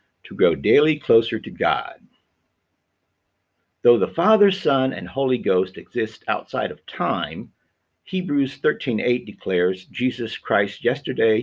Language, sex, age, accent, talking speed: English, male, 50-69, American, 120 wpm